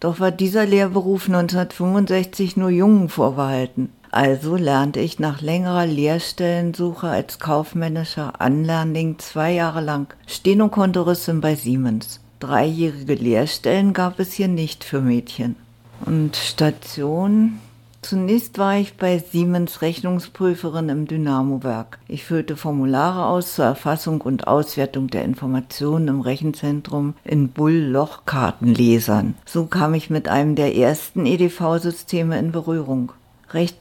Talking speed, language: 115 wpm, German